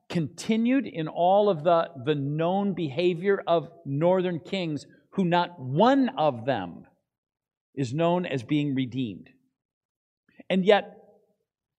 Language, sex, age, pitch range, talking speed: English, male, 50-69, 165-245 Hz, 115 wpm